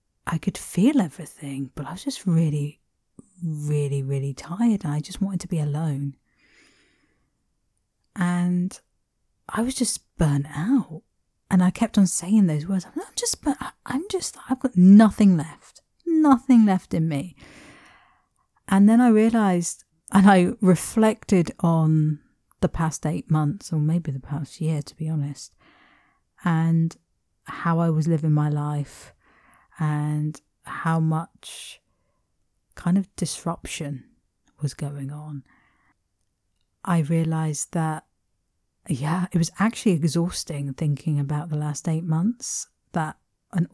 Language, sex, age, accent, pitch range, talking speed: English, female, 40-59, British, 145-185 Hz, 130 wpm